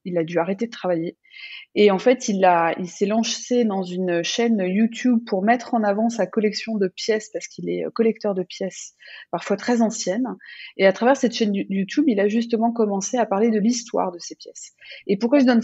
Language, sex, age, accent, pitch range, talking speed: French, female, 20-39, French, 195-235 Hz, 215 wpm